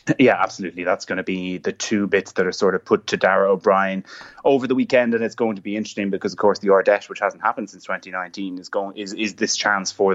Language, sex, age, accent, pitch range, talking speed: English, male, 20-39, Irish, 95-110 Hz, 250 wpm